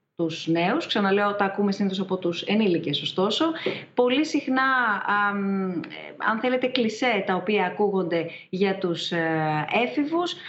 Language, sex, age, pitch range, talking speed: Greek, female, 30-49, 190-240 Hz, 135 wpm